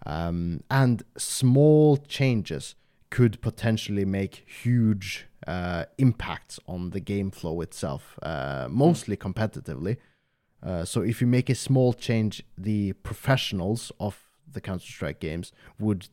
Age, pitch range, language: 30-49, 95-120 Hz, English